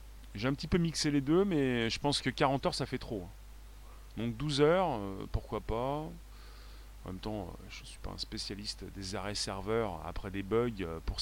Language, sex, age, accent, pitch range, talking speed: French, male, 30-49, French, 105-140 Hz, 195 wpm